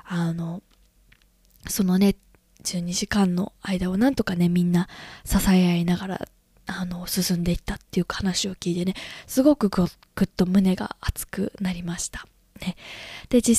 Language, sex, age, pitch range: Japanese, female, 20-39, 185-225 Hz